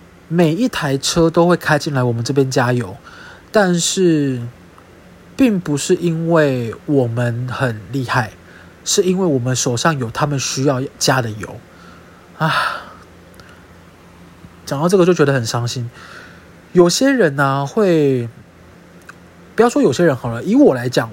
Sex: male